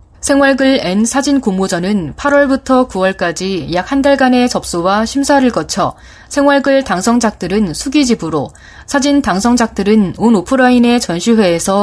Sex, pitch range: female, 180-245 Hz